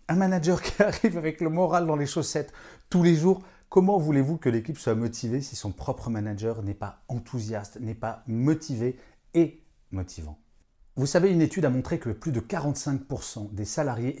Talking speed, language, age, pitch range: 180 wpm, French, 40-59, 110-155 Hz